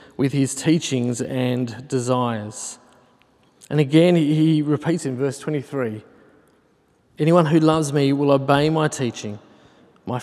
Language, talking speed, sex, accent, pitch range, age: English, 125 wpm, male, Australian, 130-155 Hz, 40-59